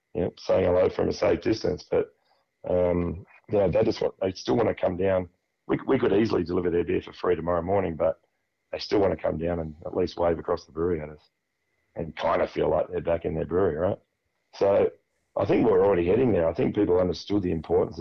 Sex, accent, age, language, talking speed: male, Australian, 40-59, English, 235 wpm